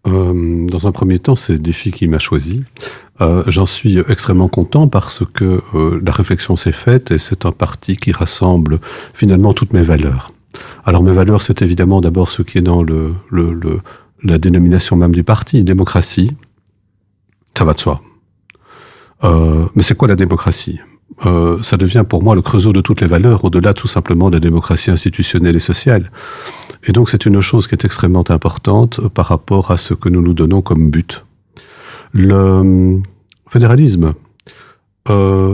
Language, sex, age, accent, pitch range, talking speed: French, male, 40-59, French, 90-105 Hz, 175 wpm